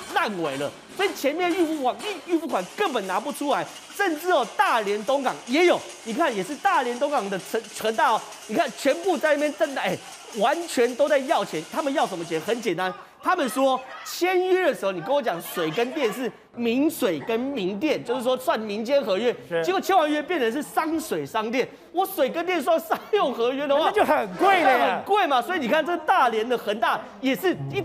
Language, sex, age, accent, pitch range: Chinese, male, 30-49, native, 230-340 Hz